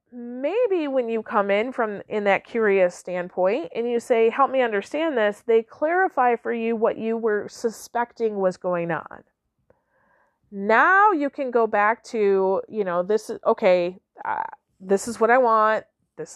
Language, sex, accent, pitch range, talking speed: English, female, American, 205-275 Hz, 170 wpm